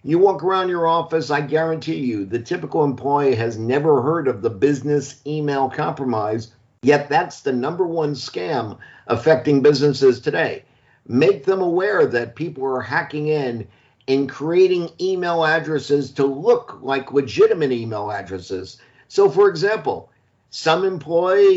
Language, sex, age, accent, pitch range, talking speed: English, male, 50-69, American, 135-180 Hz, 140 wpm